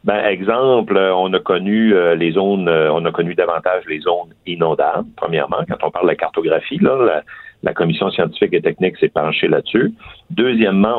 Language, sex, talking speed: French, male, 170 wpm